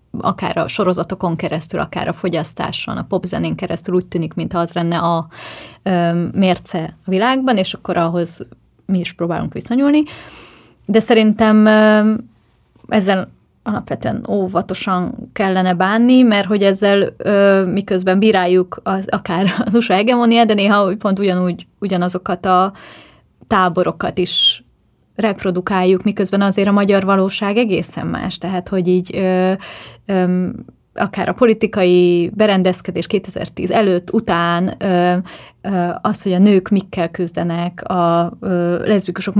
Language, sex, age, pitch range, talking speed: Hungarian, female, 20-39, 180-205 Hz, 120 wpm